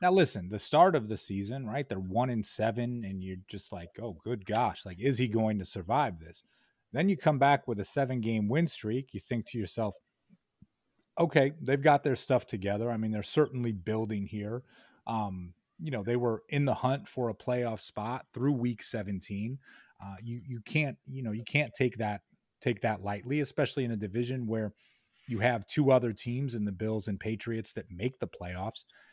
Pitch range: 105-130 Hz